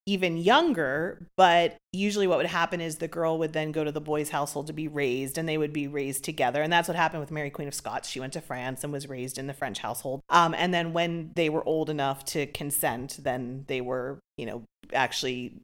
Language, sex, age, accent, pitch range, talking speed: English, female, 30-49, American, 150-195 Hz, 240 wpm